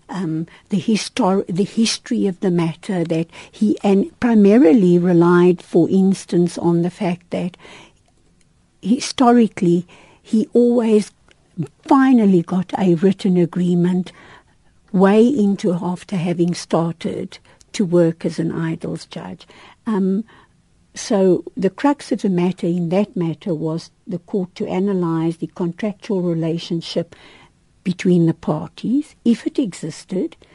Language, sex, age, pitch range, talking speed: English, female, 60-79, 170-200 Hz, 120 wpm